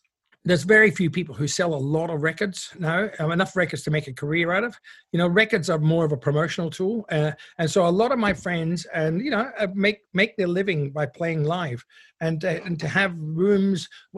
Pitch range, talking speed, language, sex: 145-175 Hz, 235 wpm, English, male